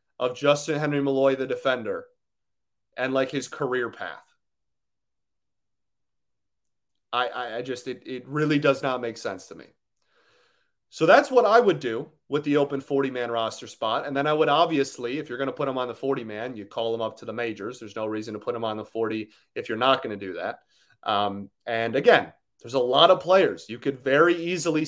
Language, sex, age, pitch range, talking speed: English, male, 30-49, 110-145 Hz, 205 wpm